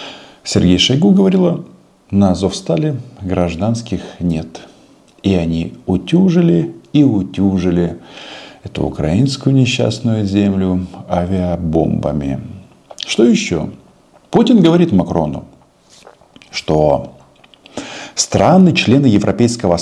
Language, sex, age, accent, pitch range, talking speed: Russian, male, 50-69, native, 90-135 Hz, 75 wpm